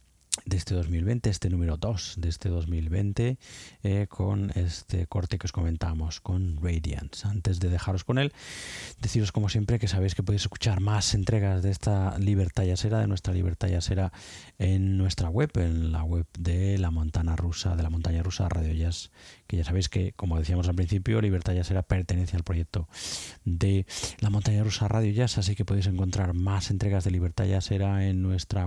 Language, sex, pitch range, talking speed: Spanish, male, 85-100 Hz, 185 wpm